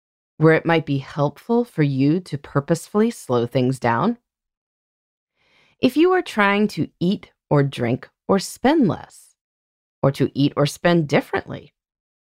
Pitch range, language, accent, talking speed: 140-230 Hz, English, American, 145 wpm